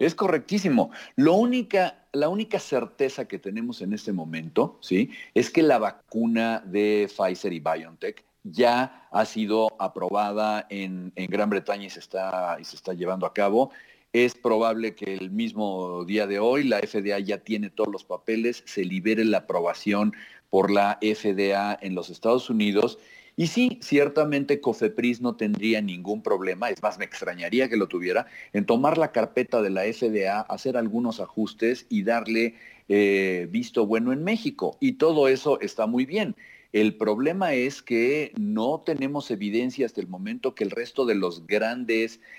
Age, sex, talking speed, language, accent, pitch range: 40-59, male, 160 wpm, English, Mexican, 100-135 Hz